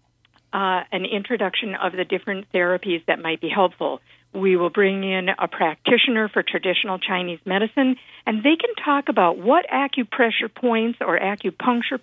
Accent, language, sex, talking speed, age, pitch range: American, English, female, 155 wpm, 50-69, 175-240 Hz